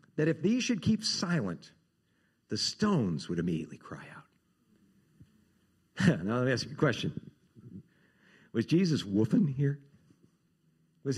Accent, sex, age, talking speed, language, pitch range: American, male, 60-79, 130 wpm, English, 120-170 Hz